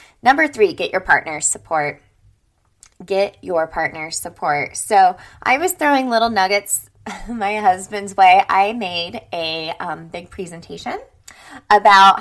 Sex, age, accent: female, 20-39, American